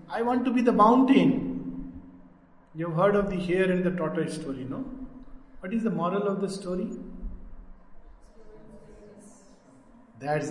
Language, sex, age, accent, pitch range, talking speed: Hindi, male, 50-69, native, 150-245 Hz, 145 wpm